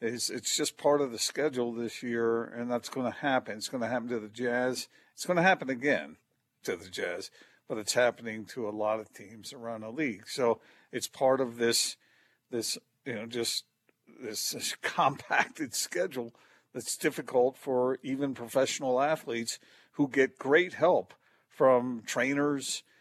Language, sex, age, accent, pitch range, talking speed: English, male, 50-69, American, 110-130 Hz, 170 wpm